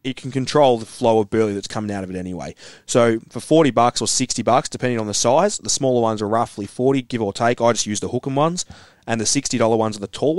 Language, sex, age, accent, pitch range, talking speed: English, male, 20-39, Australian, 110-125 Hz, 270 wpm